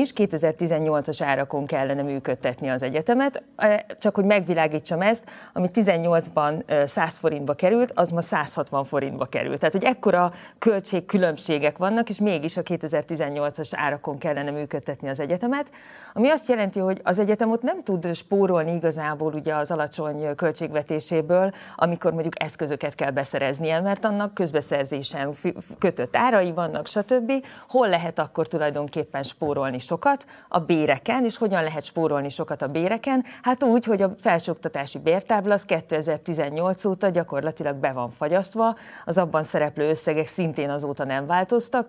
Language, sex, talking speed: Hungarian, female, 140 wpm